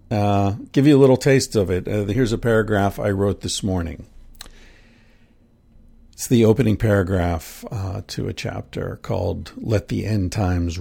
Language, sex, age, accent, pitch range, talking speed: English, male, 50-69, American, 100-125 Hz, 160 wpm